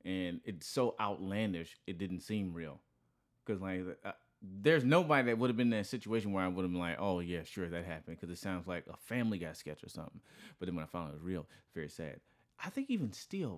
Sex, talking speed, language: male, 245 wpm, English